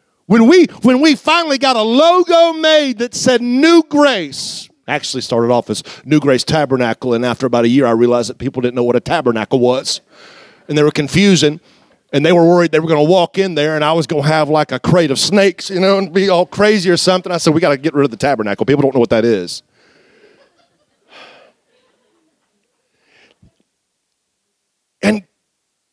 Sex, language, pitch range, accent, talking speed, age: male, English, 155-215 Hz, American, 200 wpm, 40-59